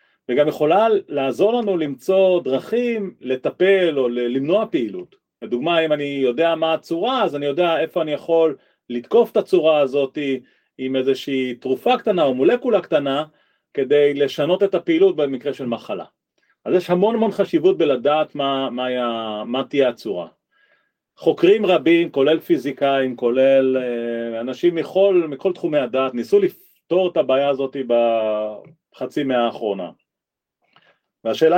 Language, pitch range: Hebrew, 130-185 Hz